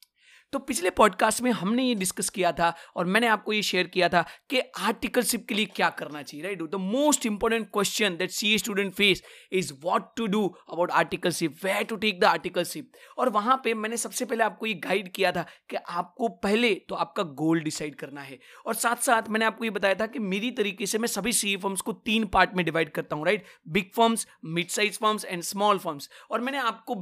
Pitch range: 180-230 Hz